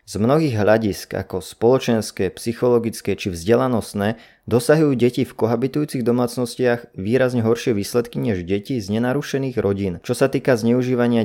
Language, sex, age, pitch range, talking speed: Slovak, male, 20-39, 105-130 Hz, 135 wpm